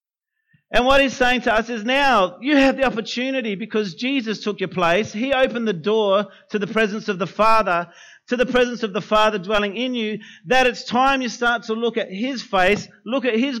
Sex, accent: male, Australian